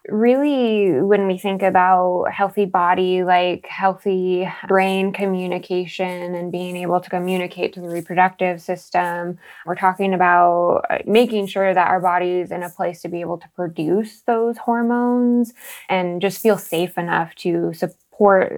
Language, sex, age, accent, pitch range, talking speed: English, female, 10-29, American, 175-205 Hz, 150 wpm